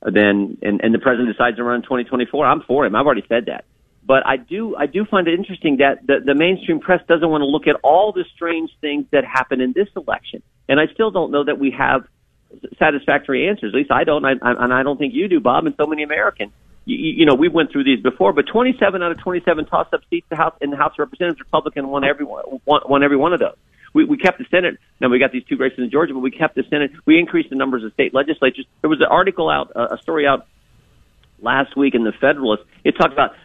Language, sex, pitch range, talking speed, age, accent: English, male, 140-185 Hz, 255 wpm, 50-69, American